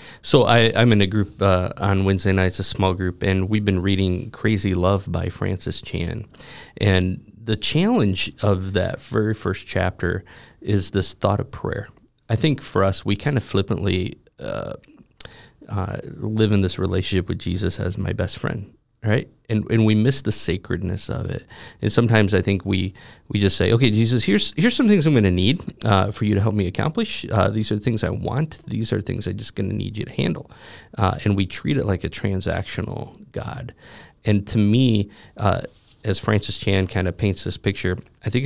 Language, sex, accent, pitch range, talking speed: English, male, American, 95-115 Hz, 205 wpm